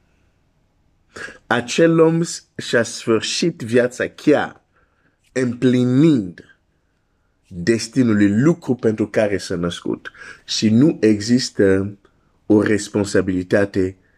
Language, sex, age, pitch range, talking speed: Romanian, male, 50-69, 90-130 Hz, 80 wpm